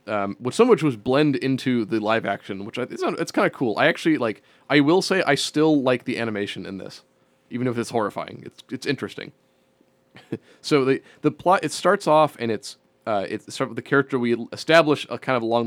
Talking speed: 230 wpm